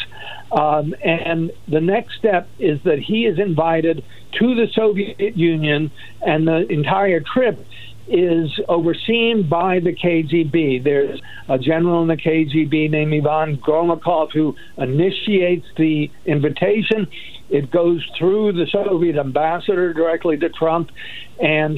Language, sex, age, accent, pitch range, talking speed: English, male, 60-79, American, 150-180 Hz, 125 wpm